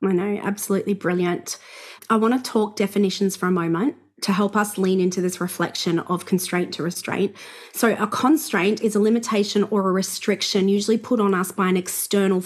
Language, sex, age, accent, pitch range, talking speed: English, female, 30-49, Australian, 185-225 Hz, 190 wpm